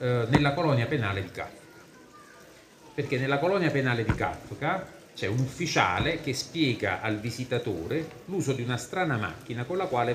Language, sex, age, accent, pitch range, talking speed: Italian, male, 40-59, native, 110-140 Hz, 155 wpm